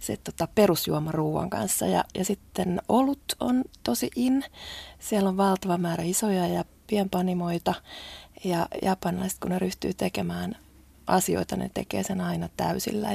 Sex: female